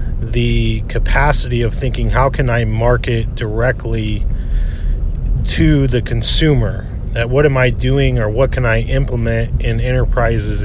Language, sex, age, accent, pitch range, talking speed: English, male, 40-59, American, 105-125 Hz, 135 wpm